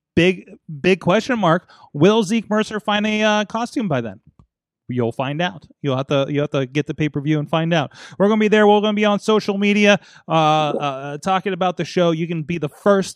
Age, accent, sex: 30-49, American, male